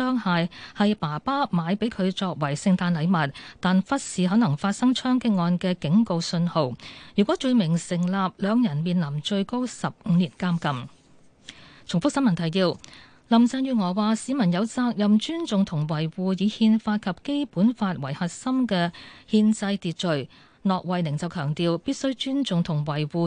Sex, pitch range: female, 170-230 Hz